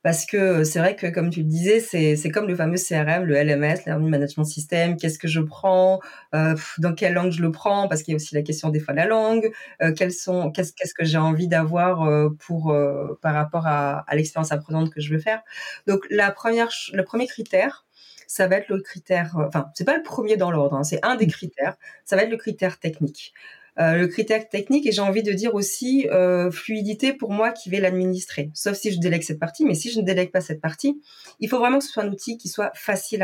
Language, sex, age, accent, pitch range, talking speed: French, female, 20-39, French, 165-205 Hz, 245 wpm